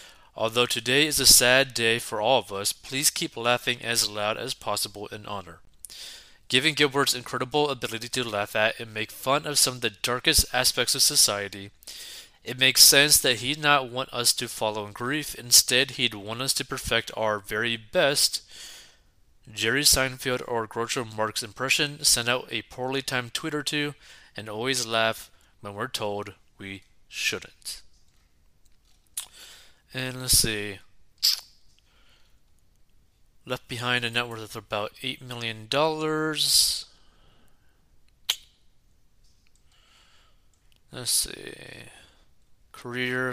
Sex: male